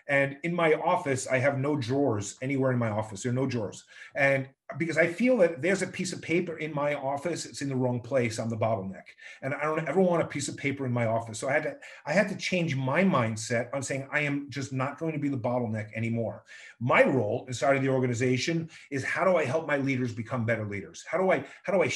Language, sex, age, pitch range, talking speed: English, male, 30-49, 130-175 Hz, 255 wpm